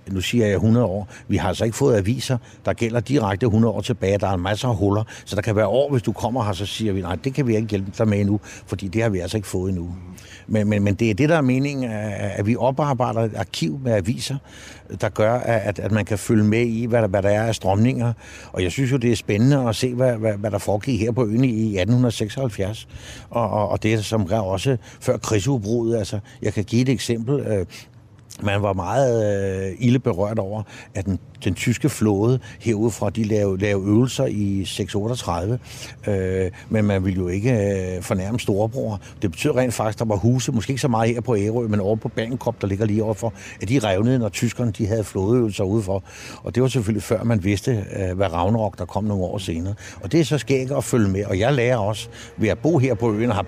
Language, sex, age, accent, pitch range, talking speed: Danish, male, 60-79, native, 100-120 Hz, 235 wpm